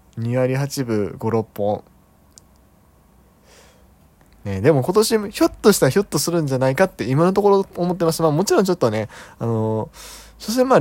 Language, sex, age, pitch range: Japanese, male, 20-39, 100-155 Hz